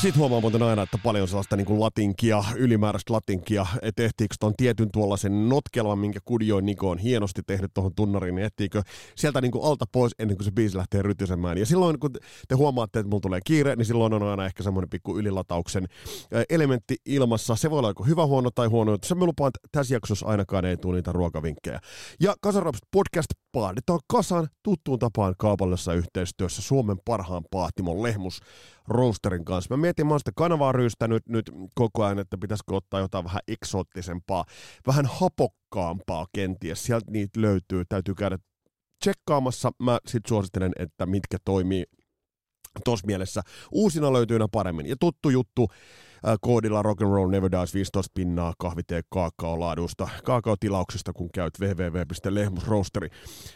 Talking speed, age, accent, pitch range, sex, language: 160 wpm, 30-49, native, 95-125 Hz, male, Finnish